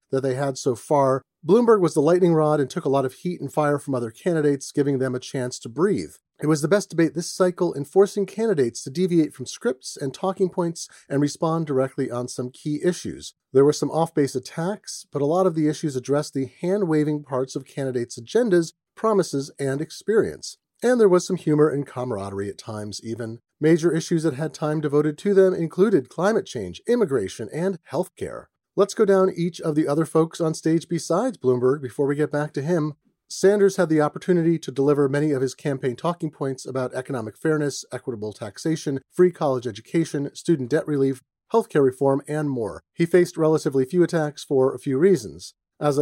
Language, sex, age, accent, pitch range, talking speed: English, male, 30-49, American, 135-175 Hz, 195 wpm